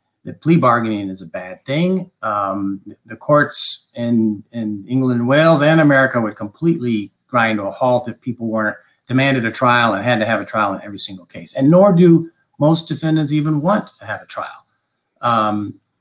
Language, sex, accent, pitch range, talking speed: English, male, American, 110-150 Hz, 195 wpm